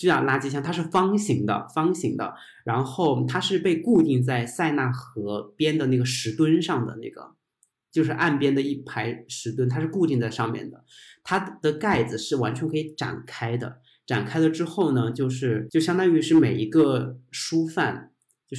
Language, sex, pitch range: Chinese, male, 120-160 Hz